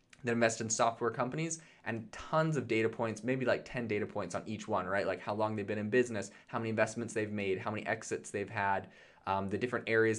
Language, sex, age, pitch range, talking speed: English, male, 20-39, 100-120 Hz, 235 wpm